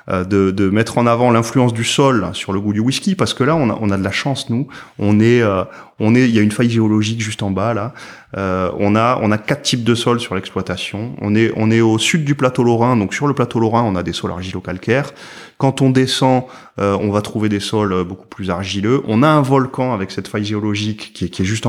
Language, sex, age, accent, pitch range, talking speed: French, male, 30-49, French, 100-130 Hz, 260 wpm